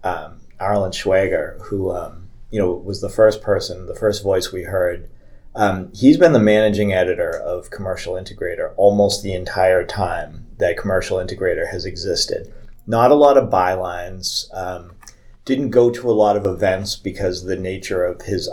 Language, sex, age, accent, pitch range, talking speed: English, male, 30-49, American, 95-115 Hz, 170 wpm